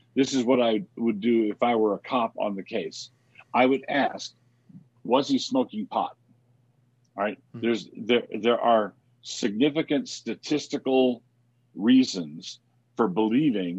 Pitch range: 115-135 Hz